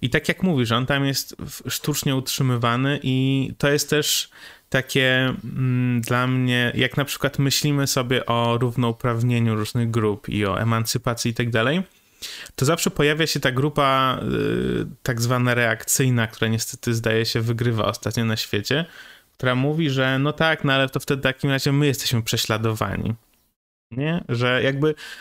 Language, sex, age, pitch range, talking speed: Polish, male, 20-39, 120-145 Hz, 155 wpm